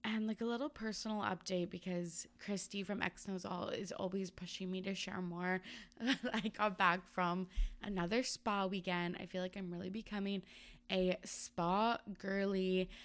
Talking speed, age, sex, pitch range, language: 160 wpm, 20-39, female, 180-210 Hz, English